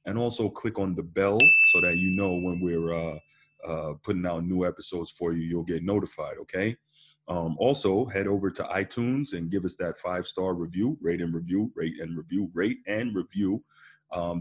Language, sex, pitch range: English, male, 85-115 Hz